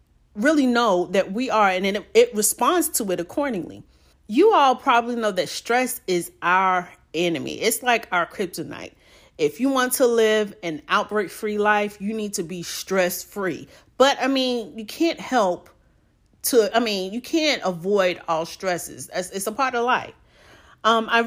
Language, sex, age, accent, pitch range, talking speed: English, female, 40-59, American, 175-245 Hz, 170 wpm